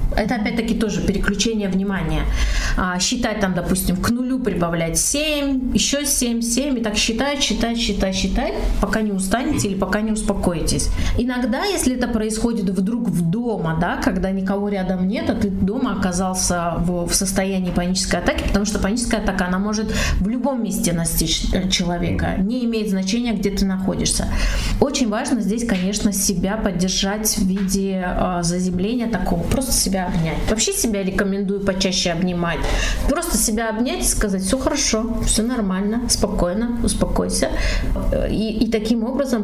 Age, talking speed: 30-49, 155 wpm